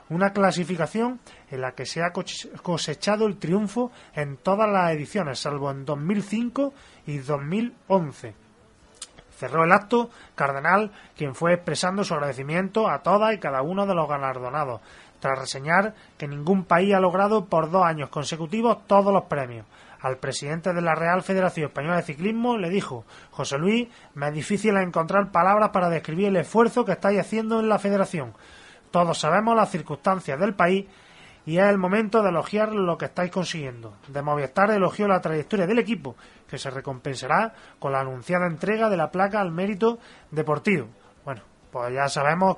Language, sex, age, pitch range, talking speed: Spanish, male, 30-49, 145-200 Hz, 165 wpm